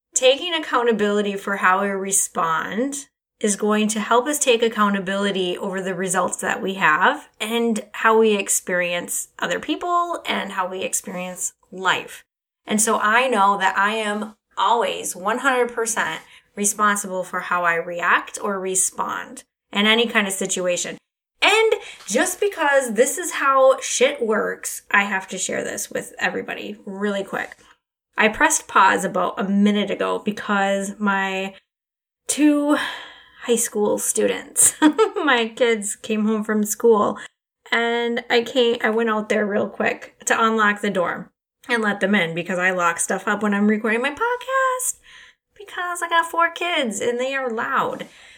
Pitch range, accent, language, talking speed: 200-265 Hz, American, English, 155 wpm